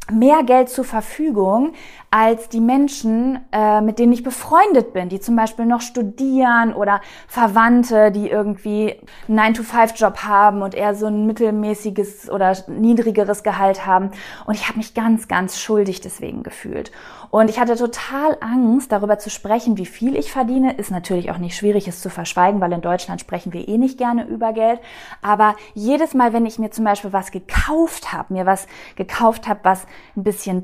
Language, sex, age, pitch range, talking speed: German, female, 20-39, 190-240 Hz, 175 wpm